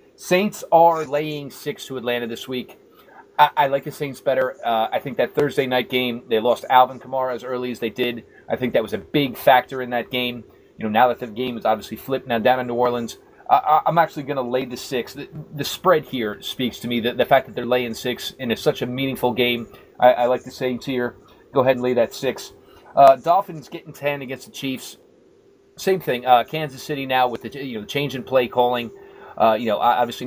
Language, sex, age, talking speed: English, male, 30-49, 230 wpm